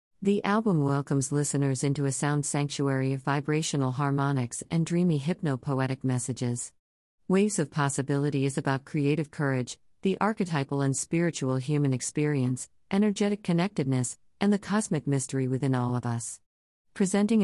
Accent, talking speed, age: American, 135 wpm, 50-69